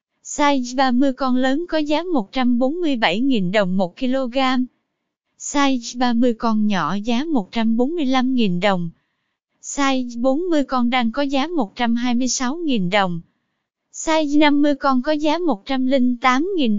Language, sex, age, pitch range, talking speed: Vietnamese, female, 20-39, 235-290 Hz, 110 wpm